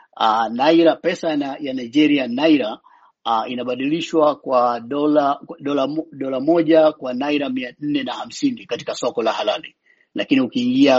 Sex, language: male, Swahili